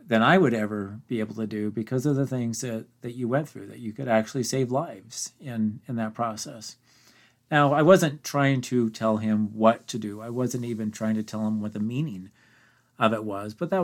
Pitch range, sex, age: 110-125 Hz, male, 40-59